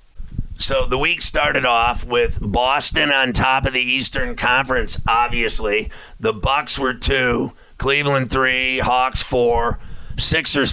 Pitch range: 115-140 Hz